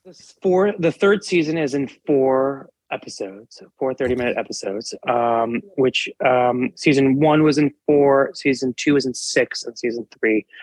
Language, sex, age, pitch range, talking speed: English, male, 30-49, 125-170 Hz, 165 wpm